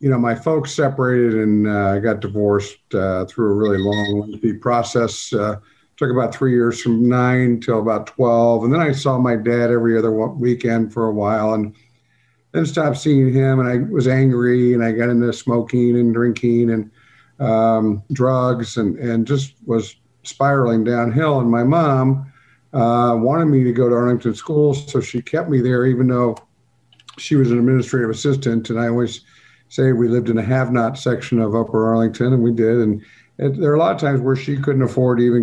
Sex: male